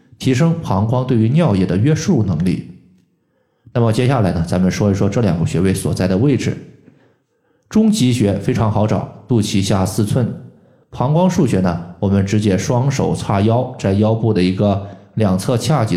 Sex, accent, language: male, native, Chinese